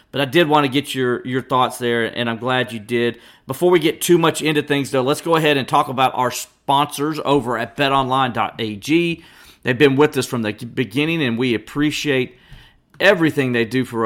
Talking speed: 205 wpm